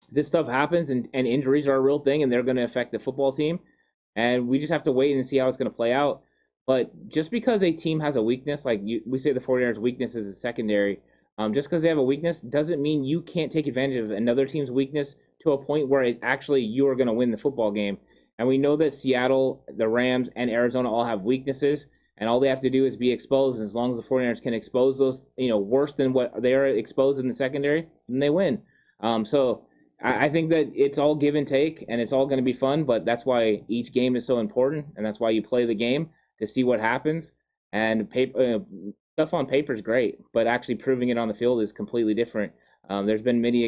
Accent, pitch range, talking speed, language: American, 115-140 Hz, 250 wpm, English